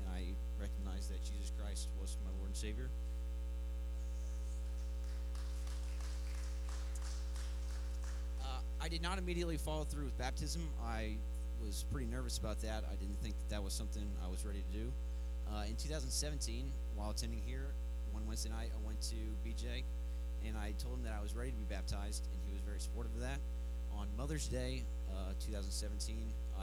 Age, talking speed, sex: 30-49, 165 wpm, male